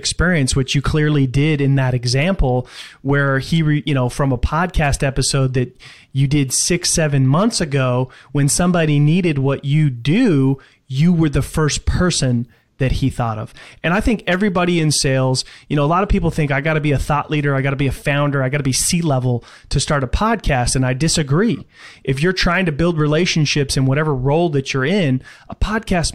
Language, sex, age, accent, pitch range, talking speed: English, male, 30-49, American, 130-155 Hz, 200 wpm